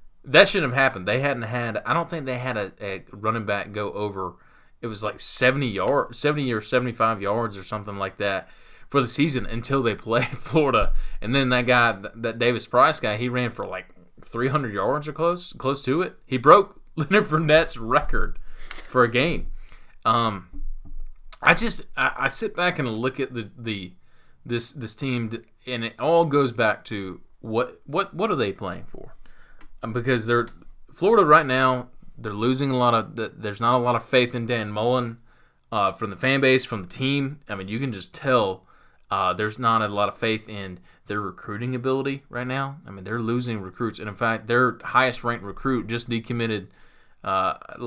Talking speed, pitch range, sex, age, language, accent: 190 wpm, 110-130 Hz, male, 20-39, English, American